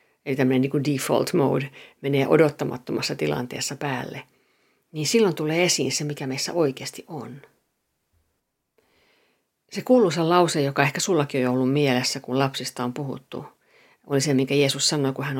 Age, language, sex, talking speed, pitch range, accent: 50-69, Finnish, female, 150 wpm, 130-155 Hz, native